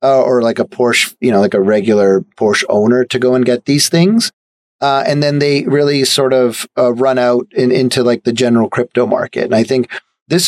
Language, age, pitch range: English, 30-49, 120-145 Hz